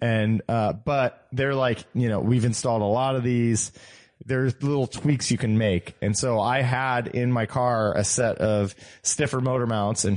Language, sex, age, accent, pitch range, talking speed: English, male, 20-39, American, 110-135 Hz, 195 wpm